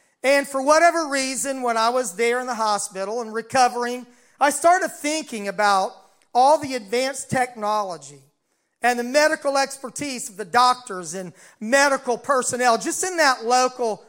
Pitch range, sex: 230-275 Hz, male